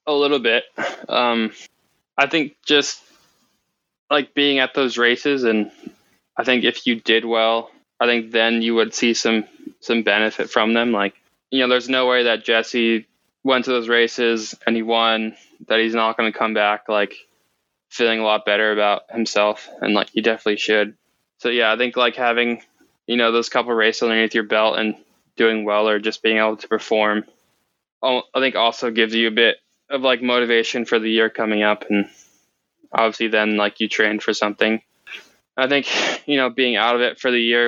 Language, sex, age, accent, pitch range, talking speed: English, male, 10-29, American, 110-120 Hz, 195 wpm